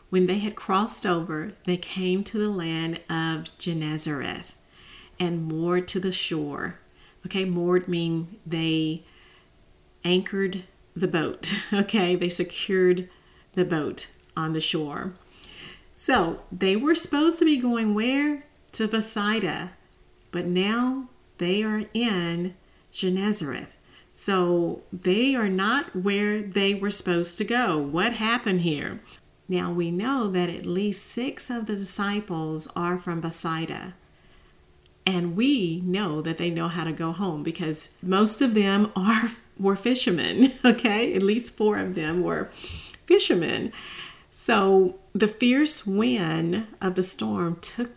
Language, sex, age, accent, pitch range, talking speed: English, female, 40-59, American, 170-210 Hz, 135 wpm